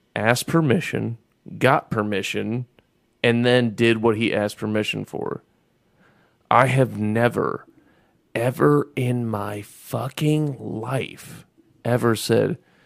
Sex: male